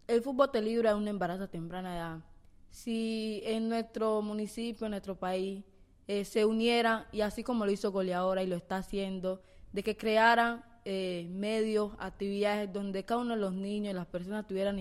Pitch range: 195-225 Hz